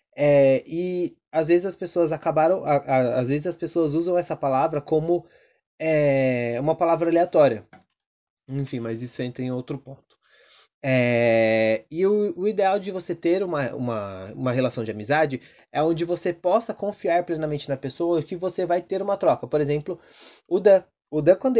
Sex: male